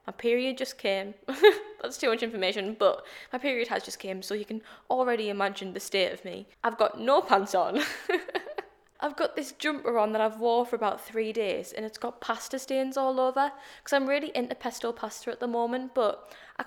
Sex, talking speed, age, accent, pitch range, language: female, 210 wpm, 10-29, British, 210-285 Hz, English